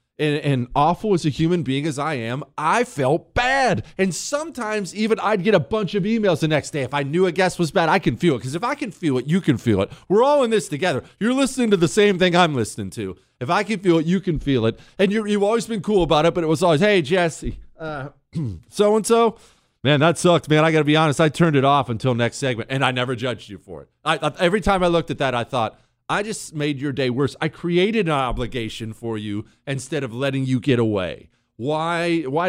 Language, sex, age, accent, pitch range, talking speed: English, male, 40-59, American, 125-185 Hz, 250 wpm